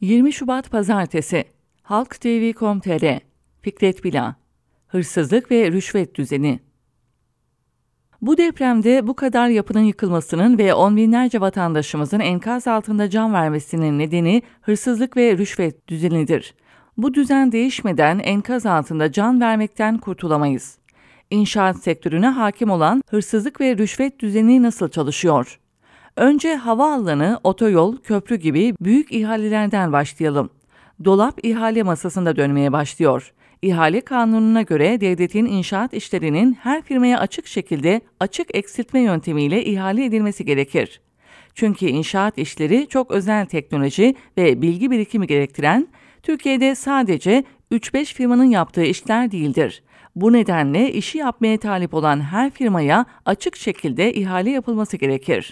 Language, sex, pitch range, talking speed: English, female, 170-240 Hz, 115 wpm